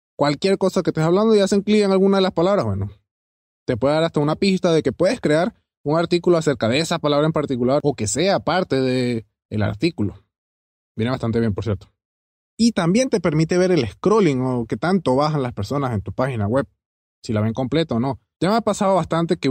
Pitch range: 115-175 Hz